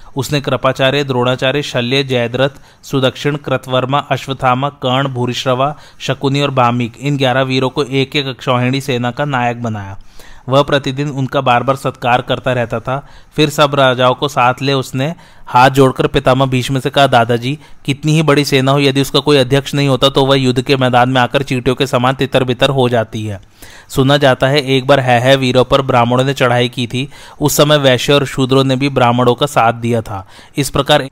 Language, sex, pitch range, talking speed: Hindi, male, 125-140 Hz, 195 wpm